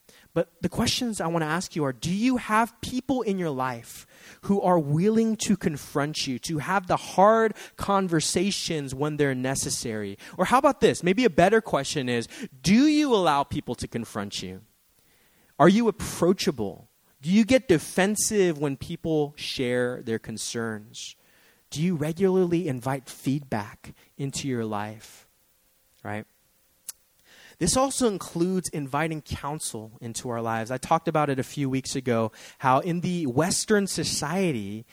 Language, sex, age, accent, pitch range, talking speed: English, male, 20-39, American, 130-195 Hz, 150 wpm